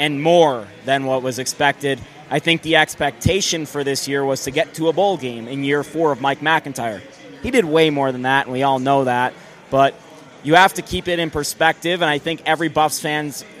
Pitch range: 140-170 Hz